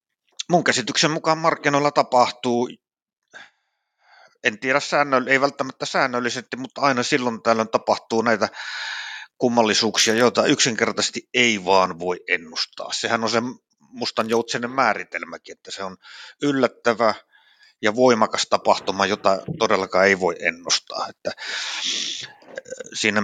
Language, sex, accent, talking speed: Finnish, male, native, 110 wpm